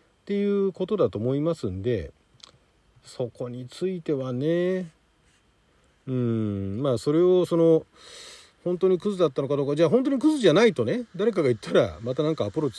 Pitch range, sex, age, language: 120-195 Hz, male, 40-59, Japanese